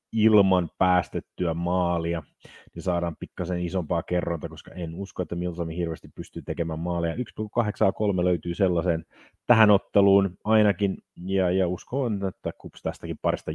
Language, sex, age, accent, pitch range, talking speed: Finnish, male, 30-49, native, 85-100 Hz, 135 wpm